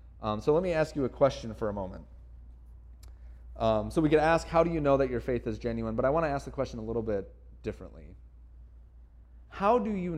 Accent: American